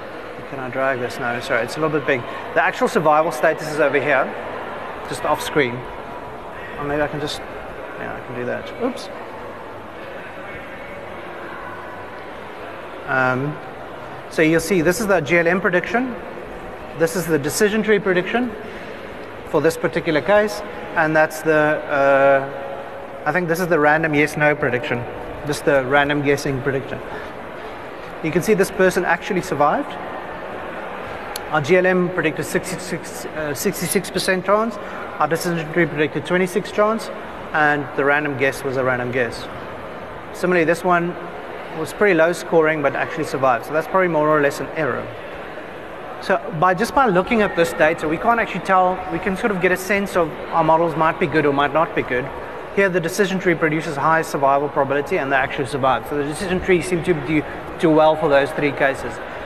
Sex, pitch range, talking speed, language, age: male, 145-185 Hz, 170 wpm, English, 30-49